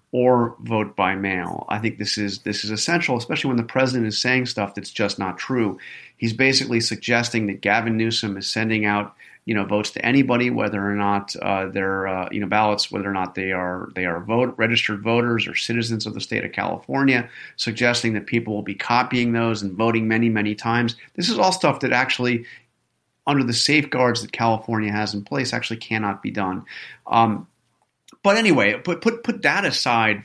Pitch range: 105-135 Hz